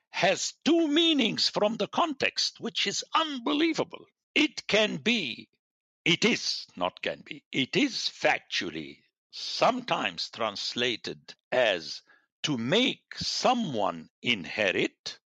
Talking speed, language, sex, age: 105 wpm, English, male, 60-79